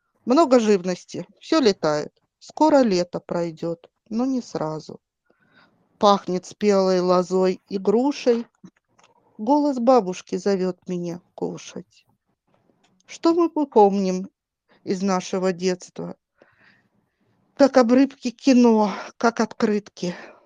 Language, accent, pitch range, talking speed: Russian, native, 180-245 Hz, 95 wpm